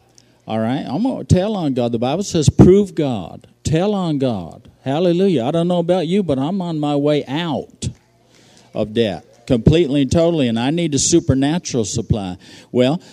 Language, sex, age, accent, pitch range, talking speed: English, male, 50-69, American, 110-140 Hz, 185 wpm